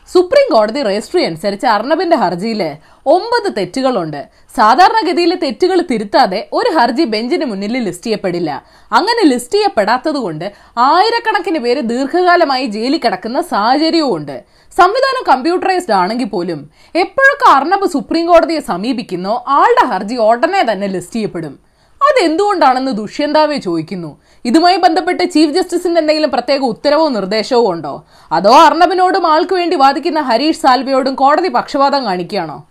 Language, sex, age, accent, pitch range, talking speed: Malayalam, female, 30-49, native, 220-340 Hz, 115 wpm